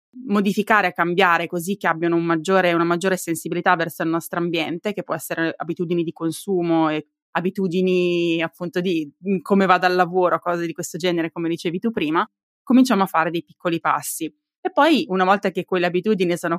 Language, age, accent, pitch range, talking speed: Italian, 20-39, native, 165-190 Hz, 185 wpm